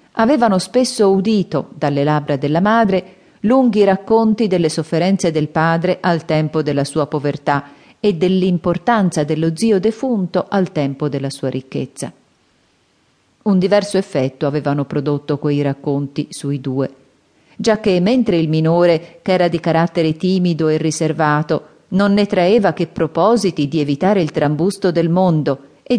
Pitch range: 150-205 Hz